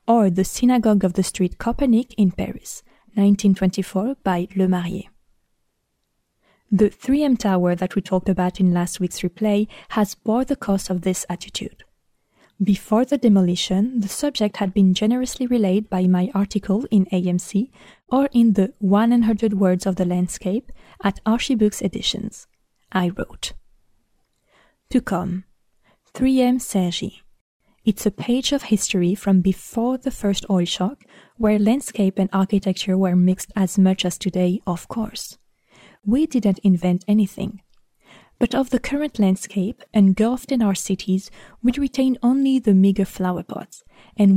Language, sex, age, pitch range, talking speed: French, female, 20-39, 190-235 Hz, 150 wpm